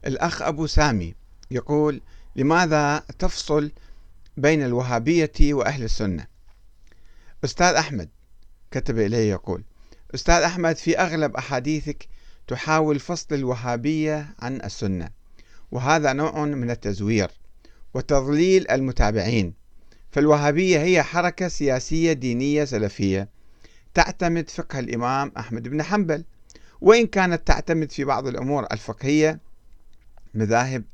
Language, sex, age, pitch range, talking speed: Arabic, male, 50-69, 110-160 Hz, 100 wpm